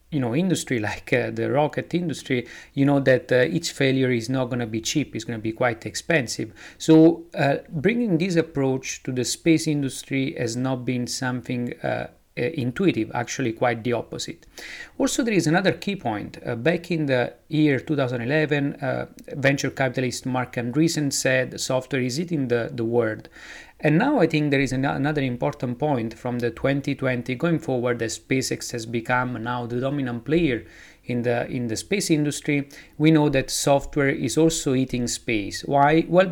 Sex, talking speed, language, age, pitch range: male, 180 wpm, English, 40-59, 120-150 Hz